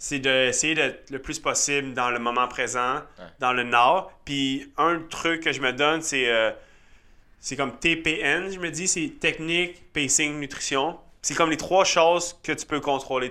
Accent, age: Canadian, 20-39